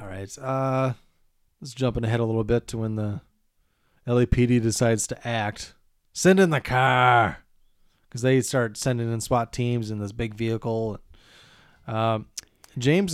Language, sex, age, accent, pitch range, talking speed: English, male, 30-49, American, 110-135 Hz, 150 wpm